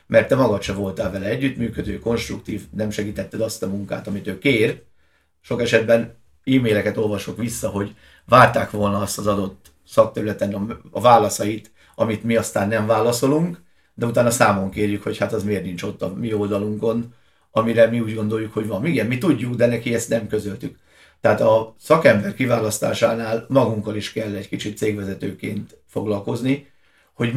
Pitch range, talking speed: 105-120 Hz, 165 wpm